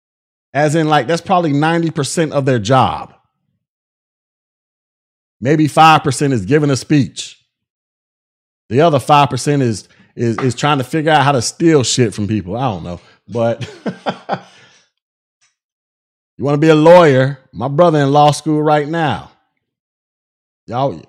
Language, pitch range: English, 130-160 Hz